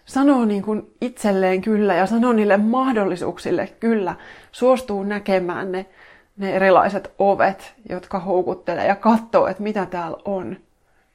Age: 20-39